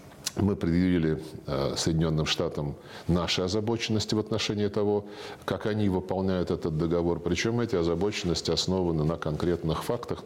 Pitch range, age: 80-105 Hz, 50-69